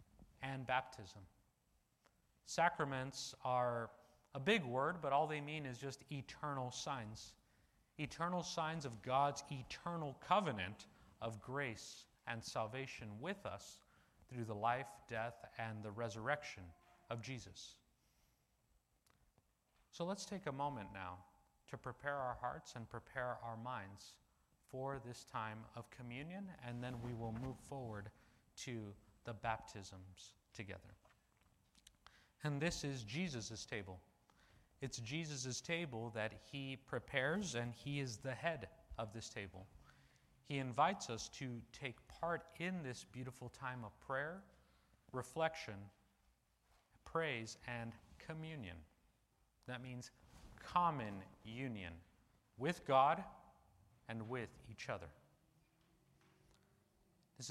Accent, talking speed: American, 115 wpm